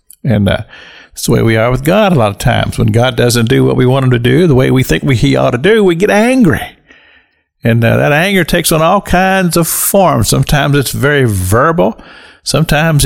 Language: English